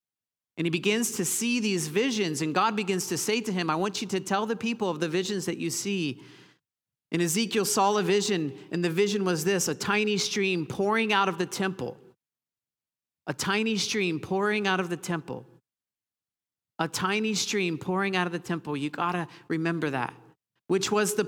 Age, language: 50-69, English